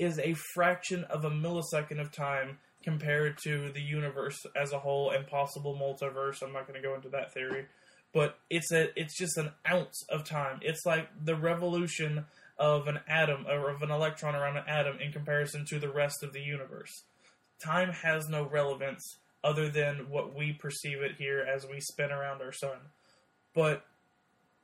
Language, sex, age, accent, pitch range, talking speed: English, male, 20-39, American, 140-160 Hz, 180 wpm